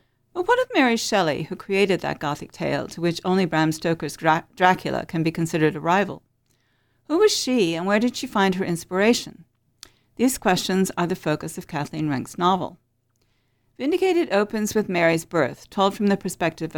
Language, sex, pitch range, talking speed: English, female, 160-215 Hz, 175 wpm